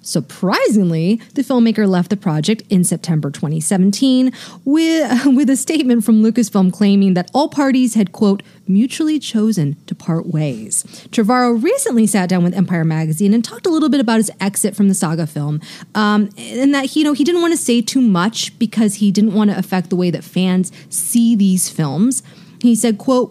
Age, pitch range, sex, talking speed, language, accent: 30-49, 185-245 Hz, female, 190 wpm, English, American